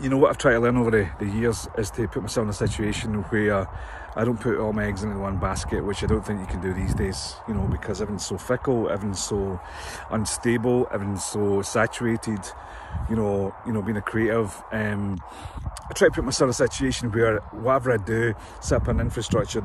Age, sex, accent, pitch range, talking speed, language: 30-49, male, British, 100-120 Hz, 225 wpm, English